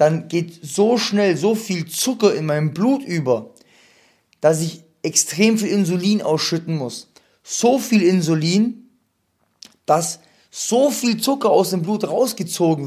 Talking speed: 135 wpm